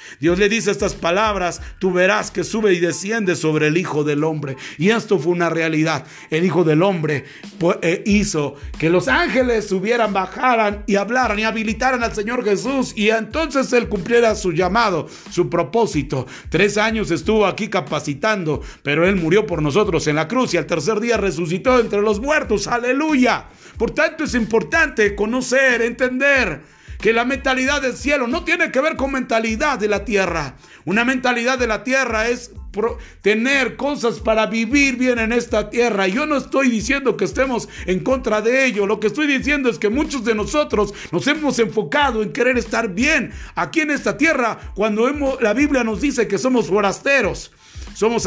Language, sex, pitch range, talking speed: Spanish, male, 190-255 Hz, 175 wpm